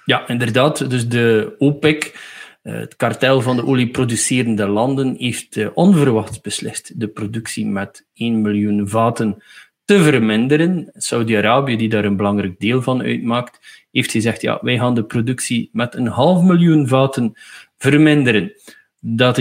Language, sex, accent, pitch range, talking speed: Dutch, male, Dutch, 115-145 Hz, 135 wpm